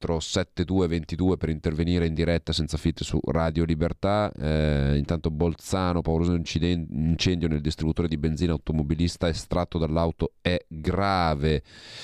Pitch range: 75-85 Hz